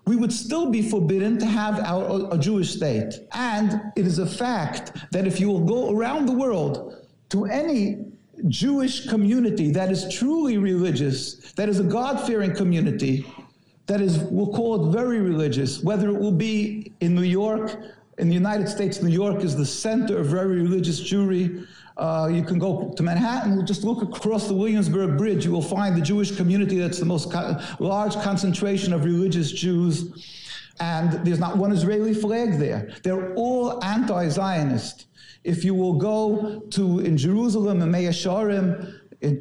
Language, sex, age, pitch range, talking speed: English, male, 50-69, 170-210 Hz, 165 wpm